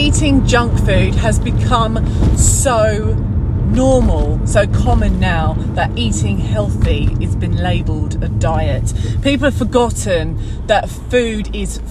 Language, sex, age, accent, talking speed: English, female, 30-49, British, 120 wpm